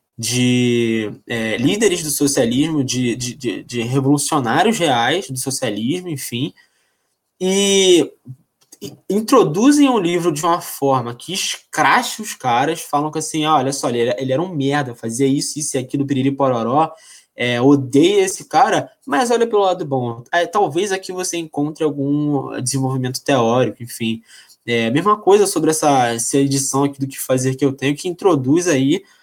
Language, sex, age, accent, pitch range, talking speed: Portuguese, male, 20-39, Brazilian, 125-175 Hz, 165 wpm